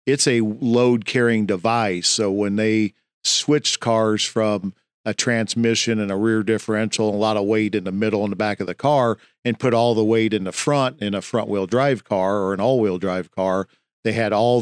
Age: 50-69